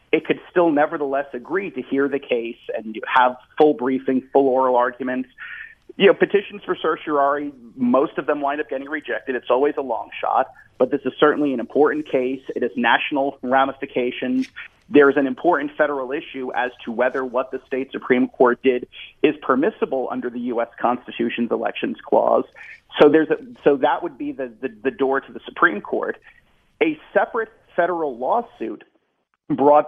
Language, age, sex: English, 40-59, male